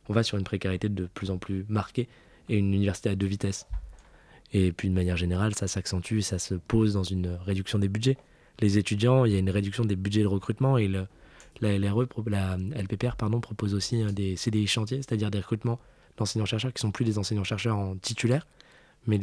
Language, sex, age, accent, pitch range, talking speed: French, male, 20-39, French, 100-120 Hz, 210 wpm